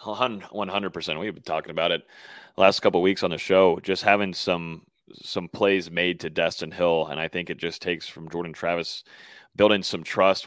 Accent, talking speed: American, 185 wpm